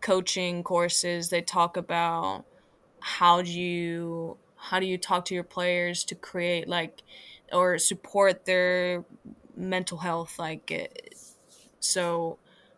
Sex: female